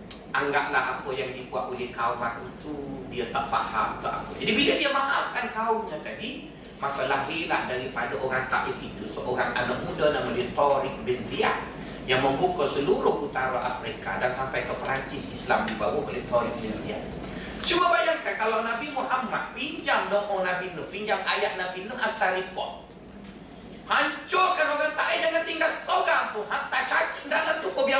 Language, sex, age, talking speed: Malay, male, 30-49, 165 wpm